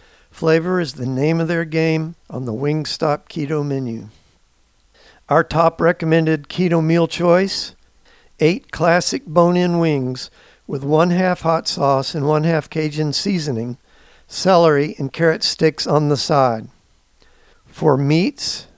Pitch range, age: 135-170 Hz, 50-69